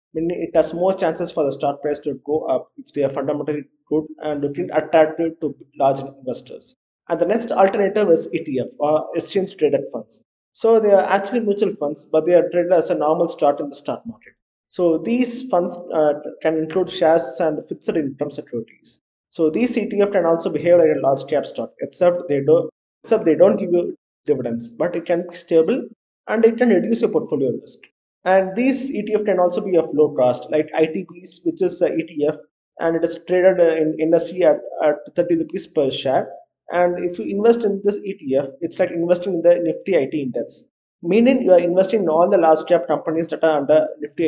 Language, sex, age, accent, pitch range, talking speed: English, male, 20-39, Indian, 155-190 Hz, 200 wpm